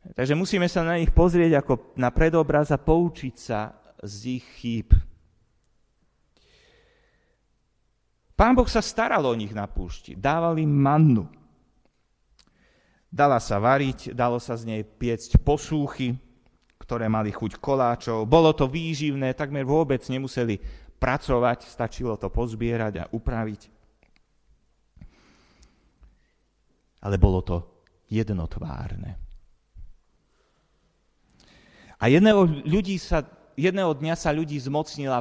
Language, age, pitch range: Slovak, 30-49, 115-170 Hz